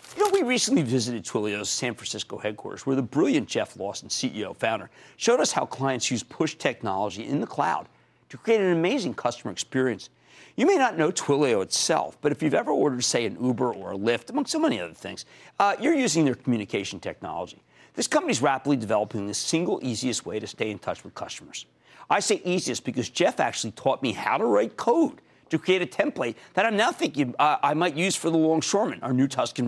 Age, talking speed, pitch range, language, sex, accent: 50-69, 210 wpm, 130-195 Hz, English, male, American